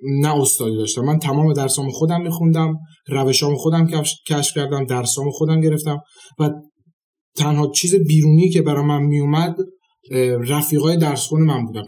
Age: 30-49